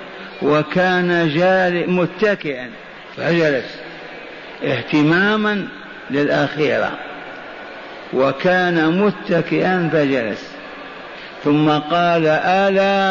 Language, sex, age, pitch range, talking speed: Arabic, male, 50-69, 170-195 Hz, 55 wpm